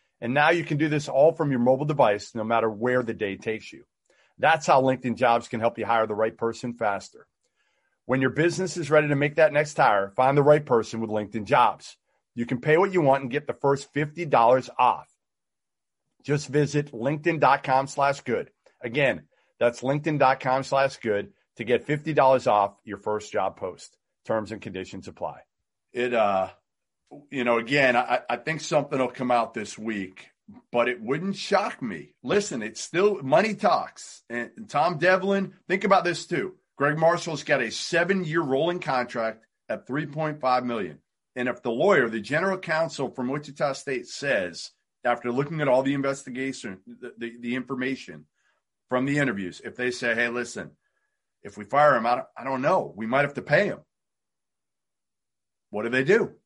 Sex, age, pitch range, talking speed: male, 40-59, 120-155 Hz, 180 wpm